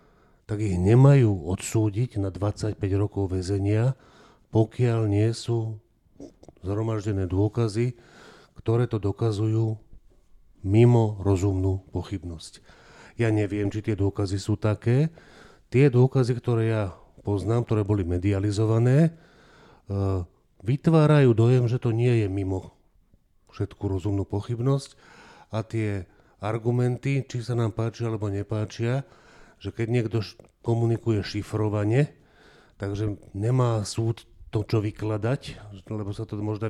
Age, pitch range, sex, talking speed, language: 40-59, 100-120 Hz, male, 110 wpm, Slovak